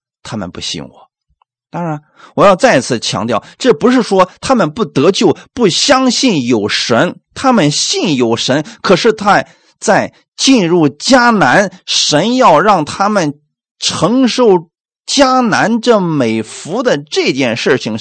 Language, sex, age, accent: Chinese, male, 30-49, native